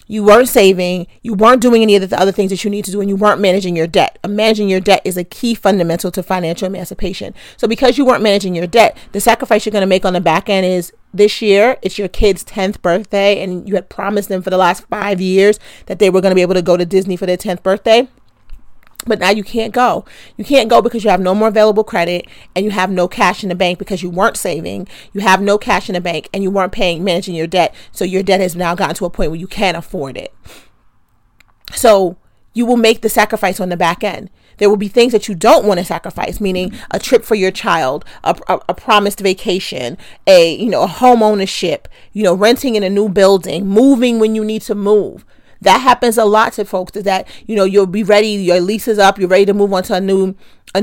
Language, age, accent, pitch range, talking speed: English, 40-59, American, 185-220 Hz, 250 wpm